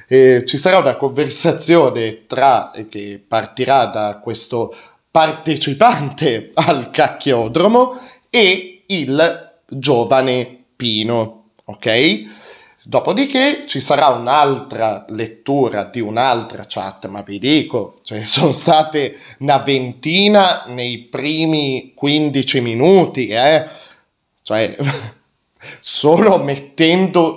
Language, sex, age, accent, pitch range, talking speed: Italian, male, 30-49, native, 115-160 Hz, 95 wpm